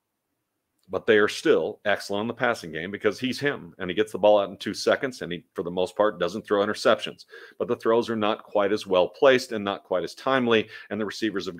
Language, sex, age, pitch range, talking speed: English, male, 40-59, 100-125 Hz, 250 wpm